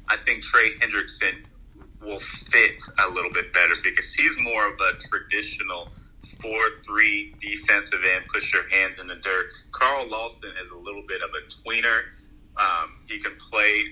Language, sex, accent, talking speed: English, male, American, 165 wpm